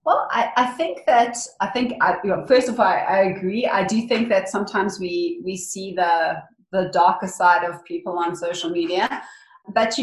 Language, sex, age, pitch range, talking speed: English, female, 30-49, 185-230 Hz, 215 wpm